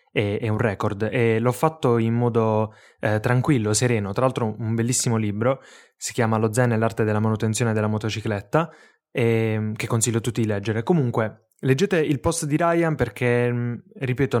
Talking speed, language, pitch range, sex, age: 170 wpm, Italian, 110-135 Hz, male, 20-39